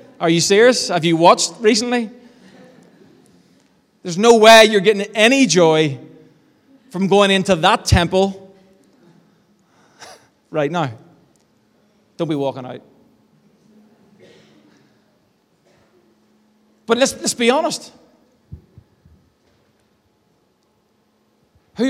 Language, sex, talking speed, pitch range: English, male, 85 wpm, 185-225 Hz